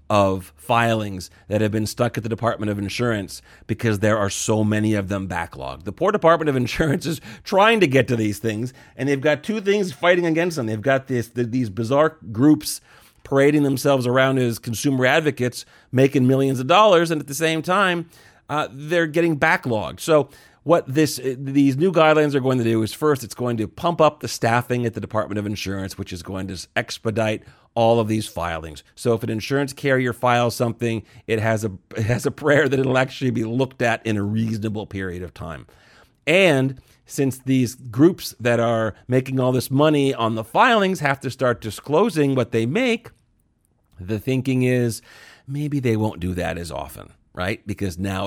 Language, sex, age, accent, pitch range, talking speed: English, male, 40-59, American, 110-140 Hz, 195 wpm